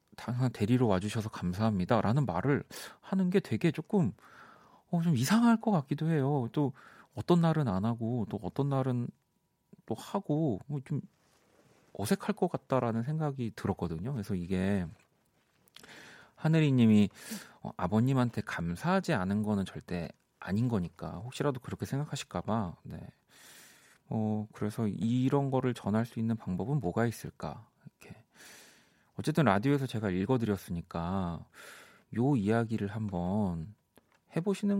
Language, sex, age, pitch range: Korean, male, 40-59, 100-145 Hz